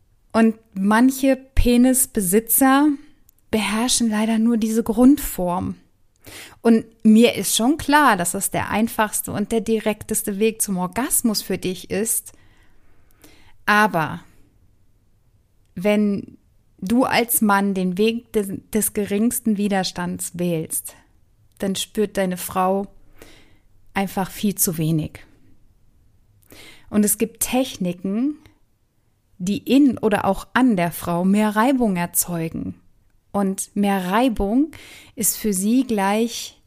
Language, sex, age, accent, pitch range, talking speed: German, female, 30-49, German, 150-225 Hz, 110 wpm